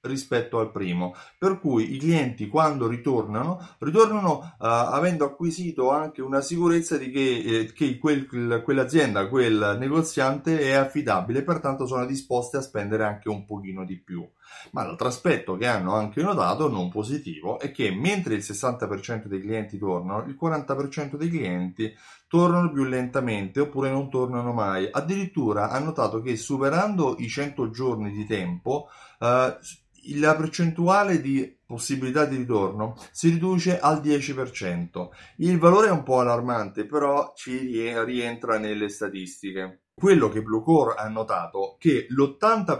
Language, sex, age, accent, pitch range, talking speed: Italian, male, 30-49, native, 105-145 Hz, 145 wpm